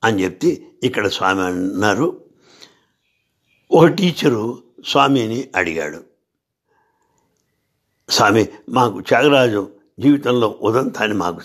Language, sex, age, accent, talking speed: English, male, 60-79, Indian, 95 wpm